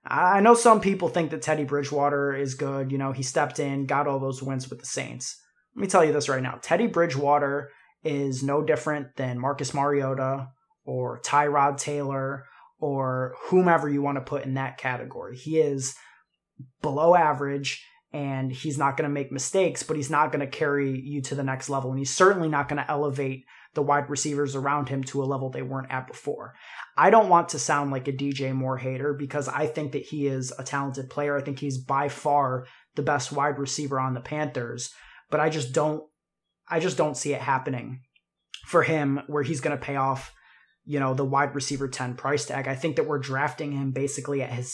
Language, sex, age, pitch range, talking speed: English, male, 20-39, 135-150 Hz, 210 wpm